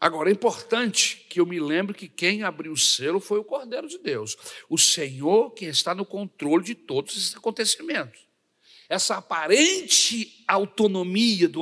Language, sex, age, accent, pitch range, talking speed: Portuguese, male, 60-79, Brazilian, 155-210 Hz, 160 wpm